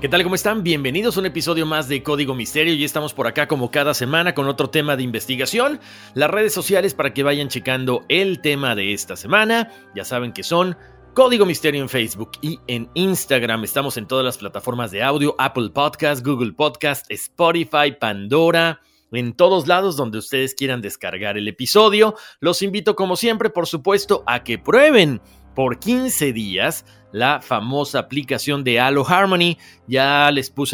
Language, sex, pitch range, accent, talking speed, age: Spanish, male, 120-165 Hz, Mexican, 175 wpm, 40-59